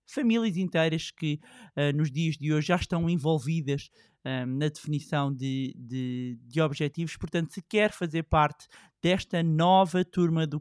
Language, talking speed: Portuguese, 135 wpm